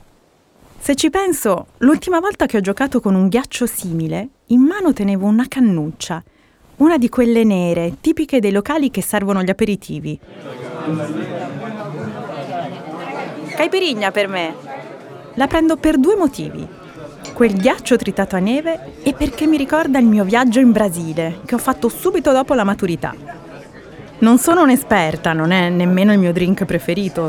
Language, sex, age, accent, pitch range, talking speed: Italian, female, 30-49, native, 175-260 Hz, 145 wpm